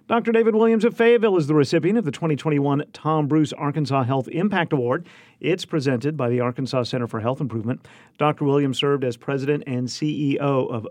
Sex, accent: male, American